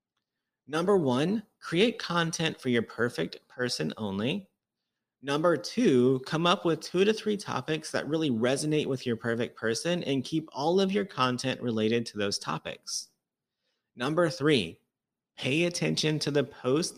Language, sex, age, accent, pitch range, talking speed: English, male, 30-49, American, 120-160 Hz, 150 wpm